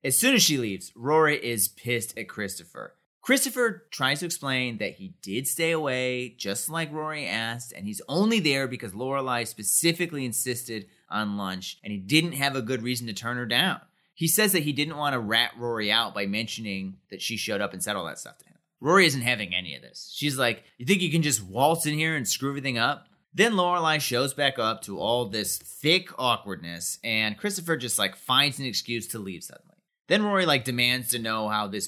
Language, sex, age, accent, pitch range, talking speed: English, male, 30-49, American, 115-165 Hz, 215 wpm